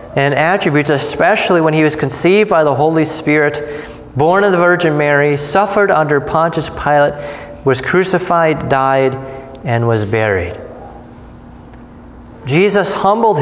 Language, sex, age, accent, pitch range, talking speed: English, male, 30-49, American, 145-200 Hz, 125 wpm